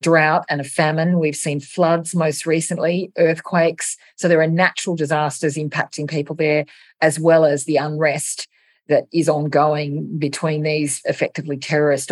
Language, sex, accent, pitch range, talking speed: English, female, Australian, 145-170 Hz, 150 wpm